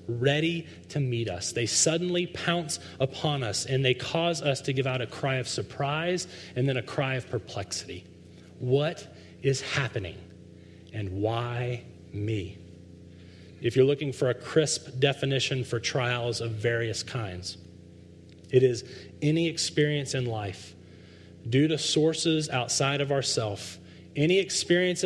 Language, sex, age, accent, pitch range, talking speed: English, male, 30-49, American, 90-150 Hz, 140 wpm